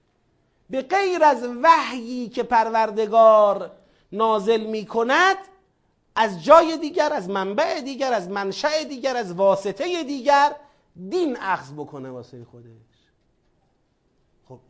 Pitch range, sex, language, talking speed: 215-290 Hz, male, Persian, 110 wpm